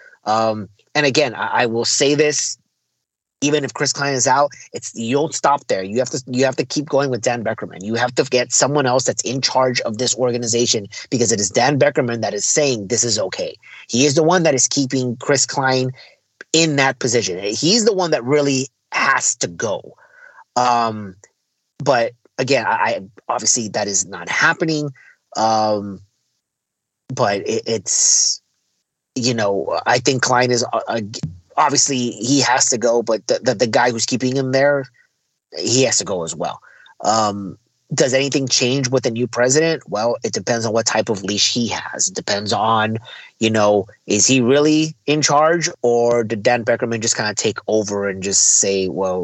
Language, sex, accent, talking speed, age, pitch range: English, male, American, 190 wpm, 30-49, 110-140 Hz